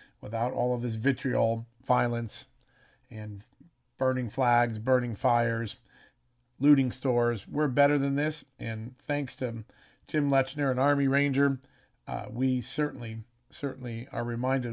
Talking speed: 125 wpm